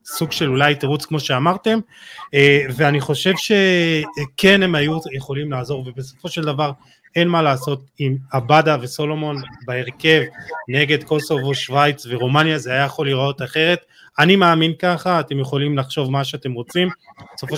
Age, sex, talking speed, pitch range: 20-39, male, 145 wpm, 130-155 Hz